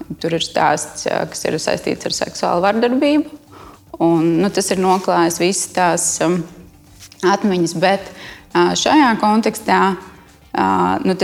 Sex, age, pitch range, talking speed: female, 20-39, 175-200 Hz, 105 wpm